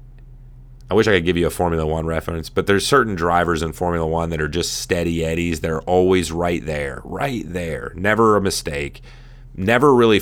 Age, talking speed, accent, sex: 30-49, 195 wpm, American, male